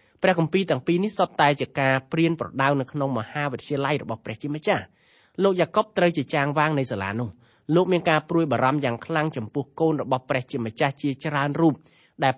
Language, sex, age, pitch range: English, male, 20-39, 125-160 Hz